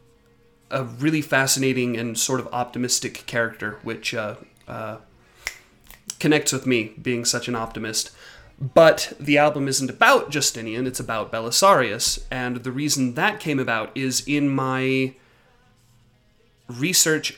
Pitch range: 120-145 Hz